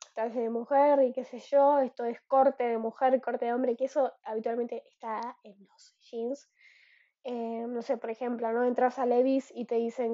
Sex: female